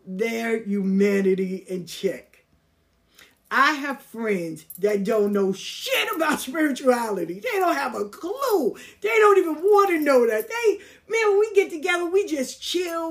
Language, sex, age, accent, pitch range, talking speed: English, female, 50-69, American, 210-310 Hz, 155 wpm